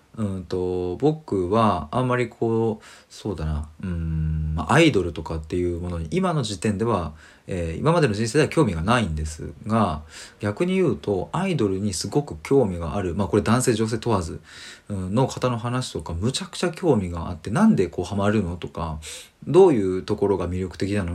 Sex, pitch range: male, 85-125 Hz